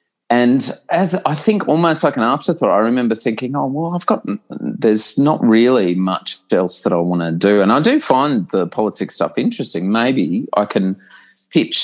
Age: 30-49